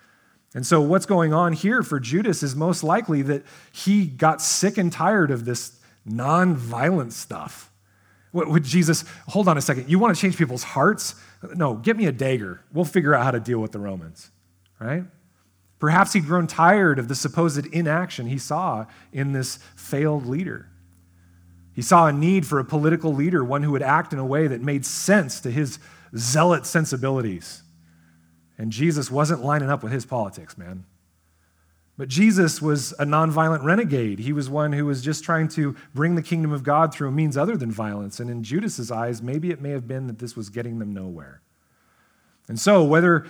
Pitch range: 120-165 Hz